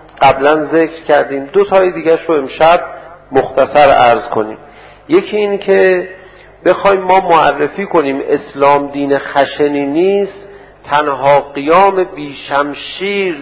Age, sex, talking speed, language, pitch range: 50-69, male, 115 wpm, Persian, 145-195 Hz